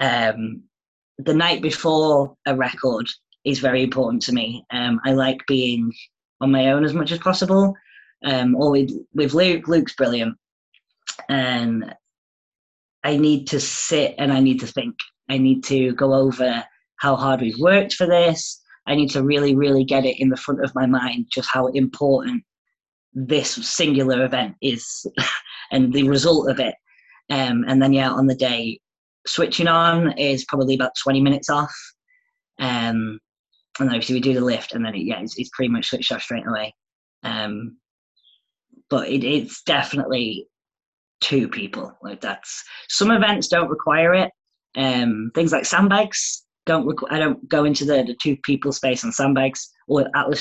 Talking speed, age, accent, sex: 170 wpm, 20-39, British, female